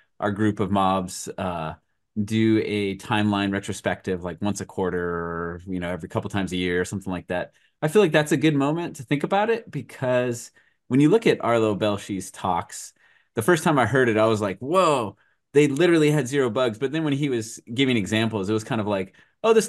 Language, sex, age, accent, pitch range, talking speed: English, male, 30-49, American, 100-140 Hz, 225 wpm